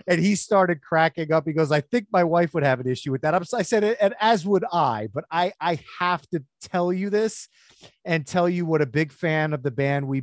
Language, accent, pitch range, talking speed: English, American, 130-170 Hz, 245 wpm